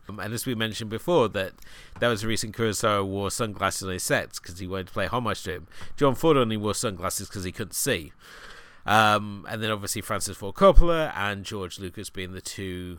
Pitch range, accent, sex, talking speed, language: 90-110 Hz, British, male, 215 wpm, English